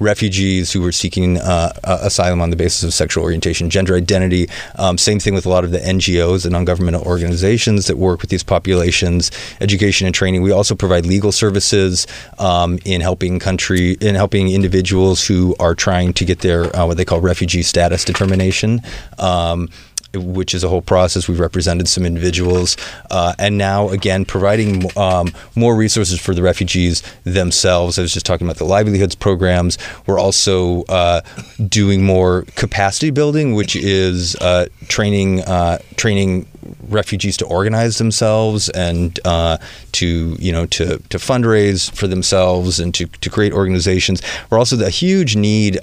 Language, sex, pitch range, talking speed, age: English, male, 90-100 Hz, 165 wpm, 30-49